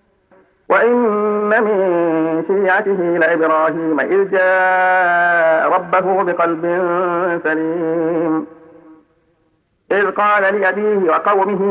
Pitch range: 170-195 Hz